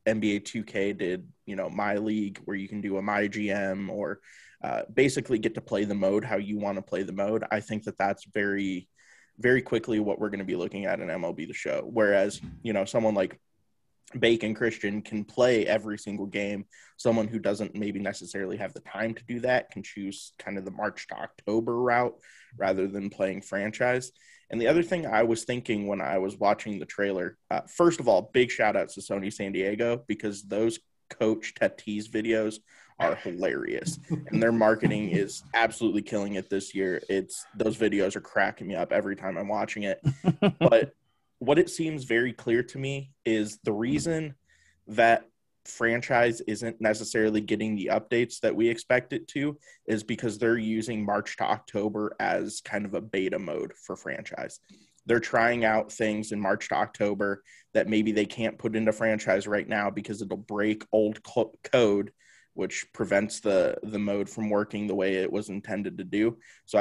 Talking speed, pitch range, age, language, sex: 190 wpm, 100-115 Hz, 20-39, English, male